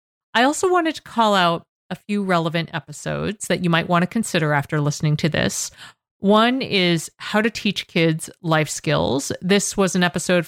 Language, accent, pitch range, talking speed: English, American, 160-205 Hz, 185 wpm